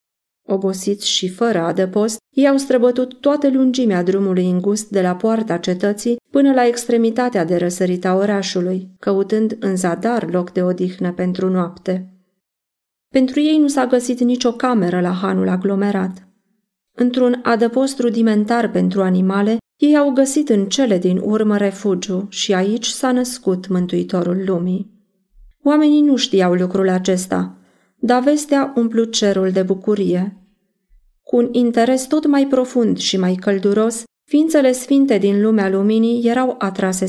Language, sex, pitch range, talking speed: Romanian, female, 190-240 Hz, 140 wpm